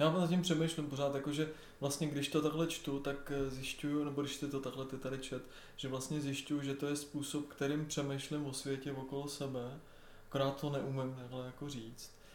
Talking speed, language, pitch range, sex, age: 200 wpm, Czech, 125-145 Hz, male, 20-39